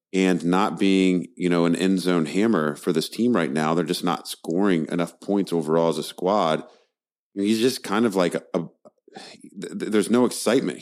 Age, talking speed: 30-49, 190 wpm